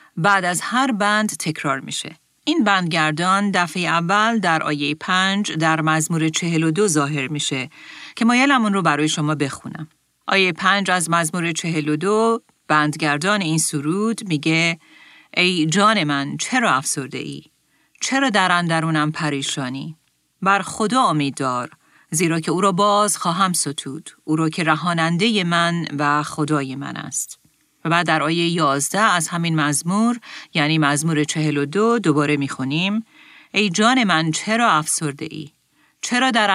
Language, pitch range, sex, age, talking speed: Persian, 150-195 Hz, female, 40-59, 145 wpm